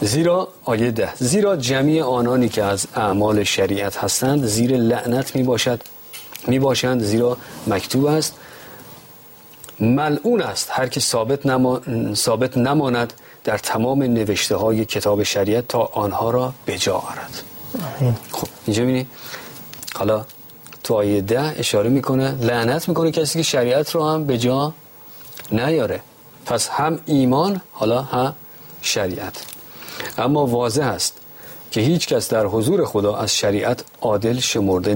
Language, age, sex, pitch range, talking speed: Persian, 40-59, male, 110-130 Hz, 135 wpm